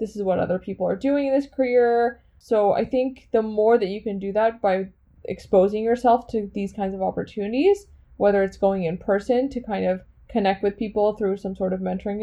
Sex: female